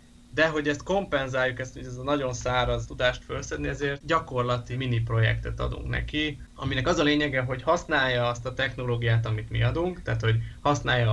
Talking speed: 180 wpm